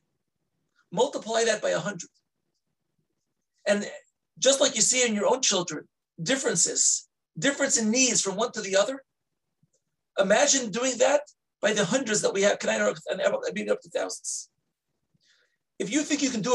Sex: male